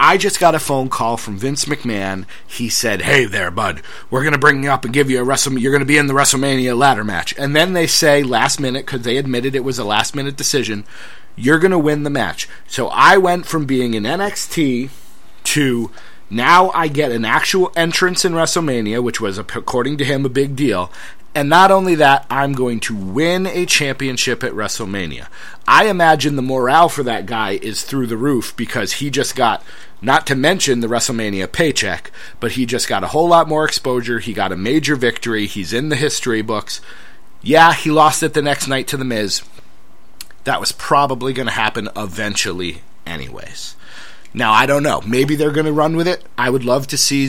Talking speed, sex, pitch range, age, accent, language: 210 wpm, male, 115-150 Hz, 30-49, American, English